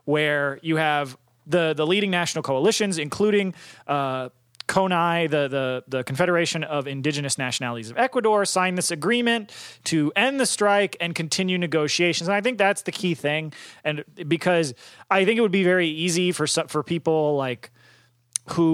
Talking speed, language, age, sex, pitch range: 165 wpm, English, 30-49, male, 145-195 Hz